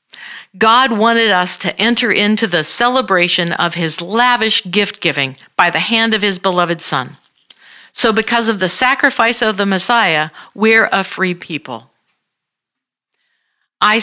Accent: American